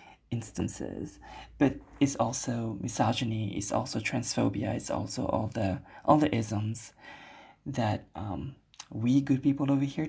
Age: 20-39